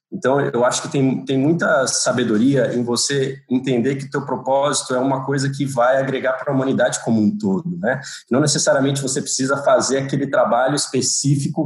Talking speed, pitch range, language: 185 wpm, 120-140 Hz, Portuguese